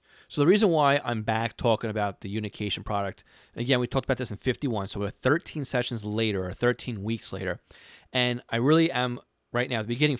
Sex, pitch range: male, 105-130 Hz